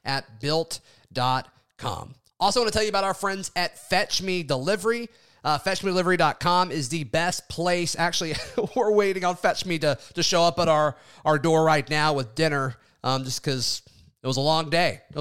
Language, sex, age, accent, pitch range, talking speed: English, male, 30-49, American, 135-170 Hz, 185 wpm